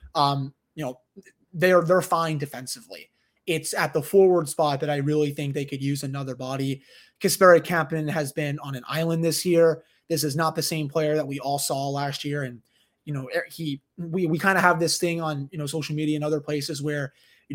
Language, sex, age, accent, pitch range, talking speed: English, male, 20-39, American, 145-170 Hz, 215 wpm